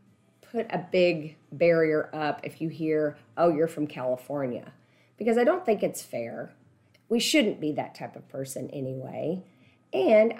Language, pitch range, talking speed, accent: English, 155-215 Hz, 155 wpm, American